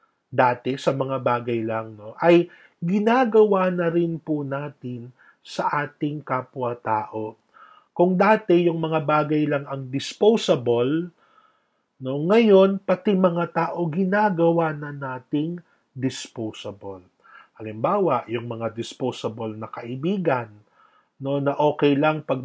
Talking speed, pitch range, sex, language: 120 wpm, 125-155 Hz, male, Filipino